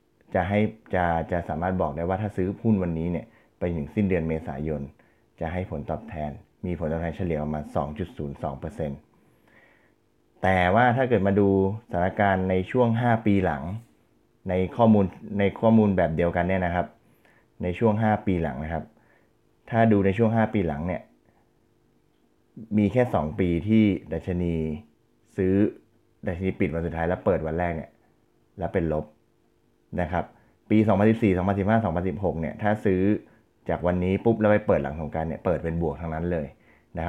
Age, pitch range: 20-39, 80-105 Hz